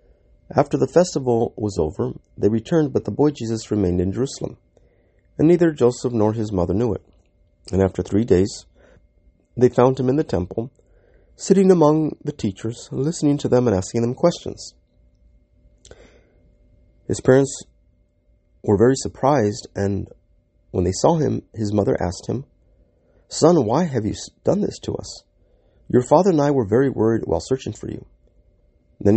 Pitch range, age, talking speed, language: 90-120 Hz, 30-49, 160 wpm, English